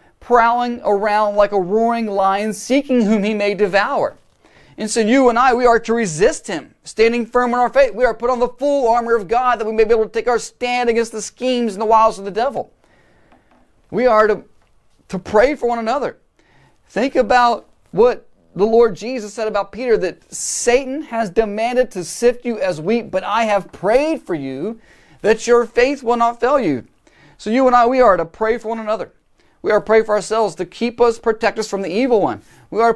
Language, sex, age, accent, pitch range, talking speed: English, male, 40-59, American, 195-235 Hz, 220 wpm